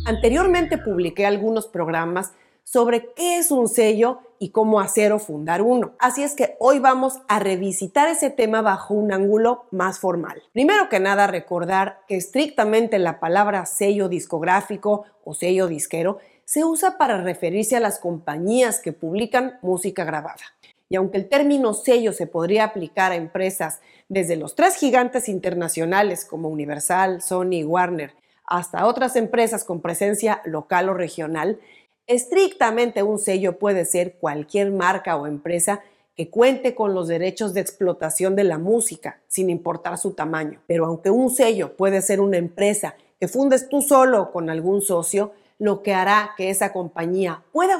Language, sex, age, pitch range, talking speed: Spanish, female, 40-59, 175-225 Hz, 160 wpm